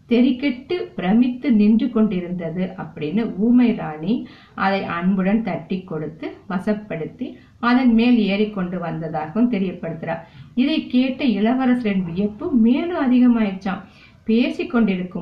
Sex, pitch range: female, 180-240 Hz